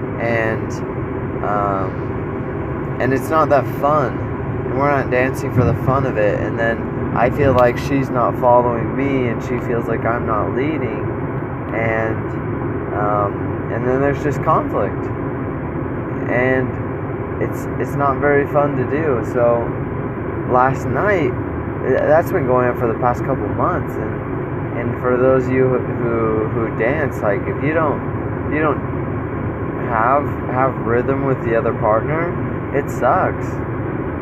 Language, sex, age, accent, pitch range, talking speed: English, male, 20-39, American, 115-130 Hz, 150 wpm